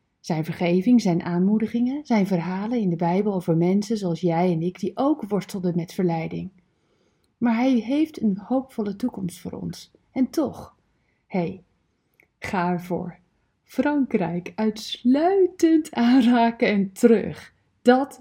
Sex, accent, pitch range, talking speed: female, Dutch, 180-255 Hz, 130 wpm